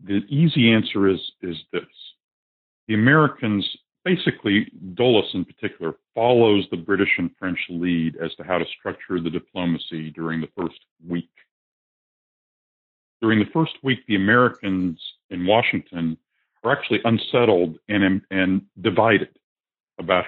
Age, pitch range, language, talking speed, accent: 50-69, 85-110 Hz, English, 130 wpm, American